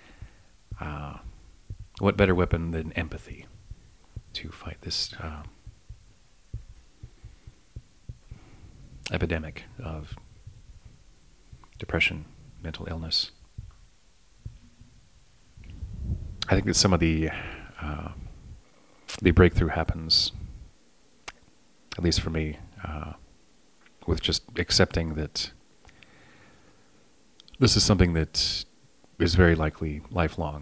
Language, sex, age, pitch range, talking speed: English, male, 40-59, 80-90 Hz, 80 wpm